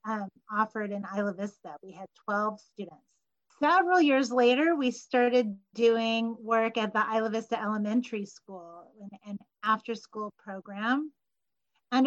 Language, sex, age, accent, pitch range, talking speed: English, female, 40-59, American, 210-250 Hz, 130 wpm